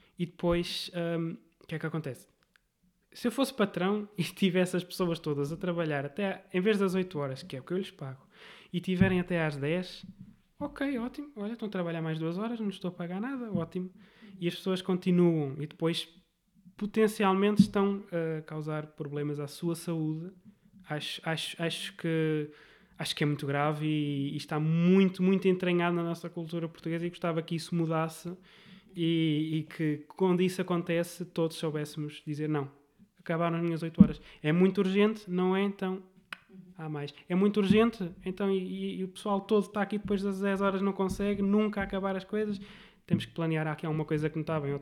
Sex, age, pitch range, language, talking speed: male, 20-39, 155-195 Hz, Portuguese, 200 wpm